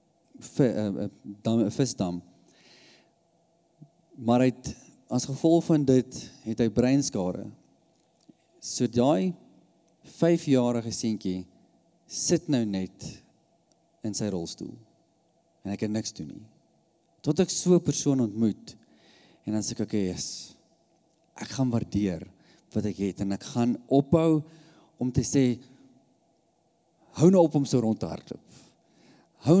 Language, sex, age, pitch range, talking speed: English, male, 40-59, 115-165 Hz, 125 wpm